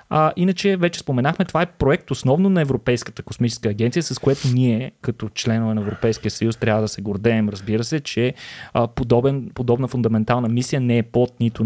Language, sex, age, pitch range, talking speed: Bulgarian, male, 20-39, 115-145 Hz, 180 wpm